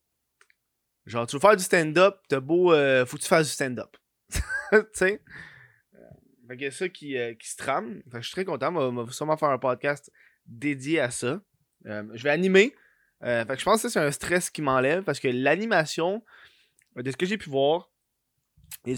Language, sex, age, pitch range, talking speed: French, male, 20-39, 130-165 Hz, 215 wpm